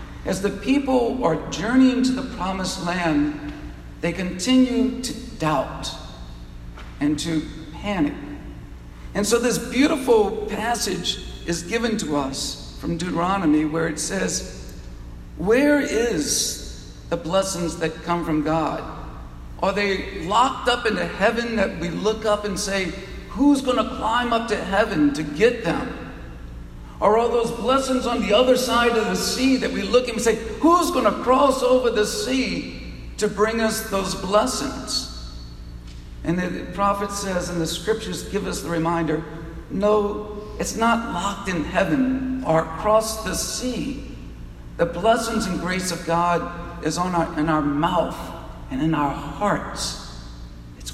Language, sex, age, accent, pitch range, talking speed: English, male, 50-69, American, 150-230 Hz, 150 wpm